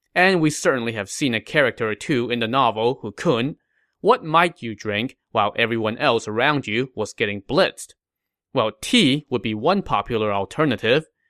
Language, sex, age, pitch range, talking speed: English, male, 20-39, 110-155 Hz, 170 wpm